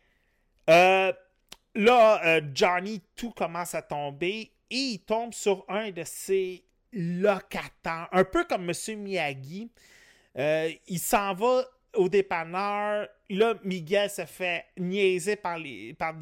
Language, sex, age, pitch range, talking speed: French, male, 30-49, 155-210 Hz, 125 wpm